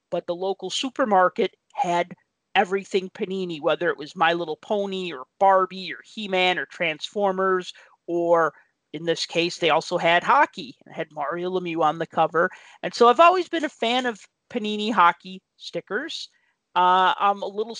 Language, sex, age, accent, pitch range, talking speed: English, male, 40-59, American, 170-210 Hz, 165 wpm